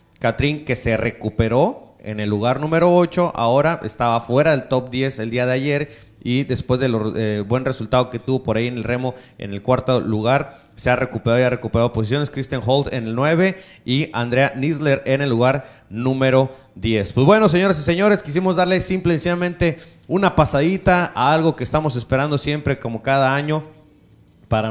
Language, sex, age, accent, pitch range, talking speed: Spanish, male, 30-49, Mexican, 120-150 Hz, 190 wpm